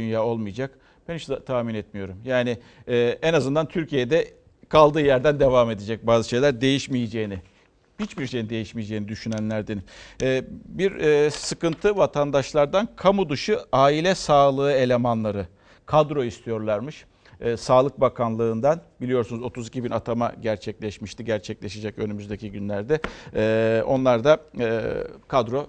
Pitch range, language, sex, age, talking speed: 115-155 Hz, Turkish, male, 50-69, 105 wpm